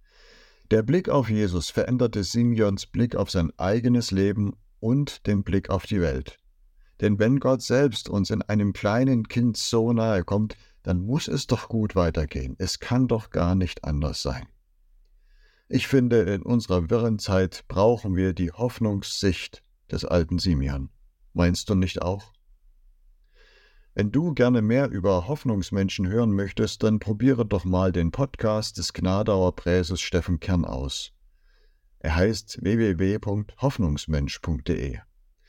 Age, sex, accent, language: 50-69, male, German, German